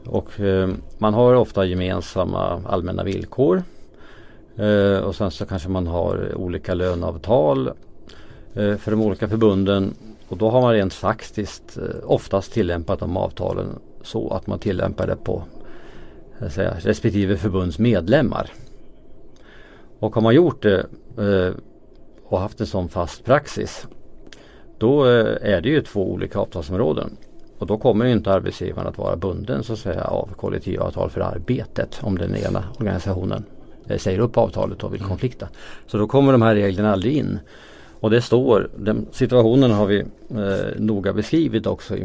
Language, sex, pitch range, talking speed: Swedish, male, 95-110 Hz, 155 wpm